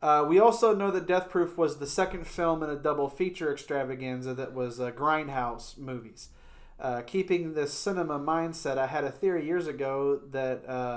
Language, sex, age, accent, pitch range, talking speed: English, male, 30-49, American, 130-170 Hz, 180 wpm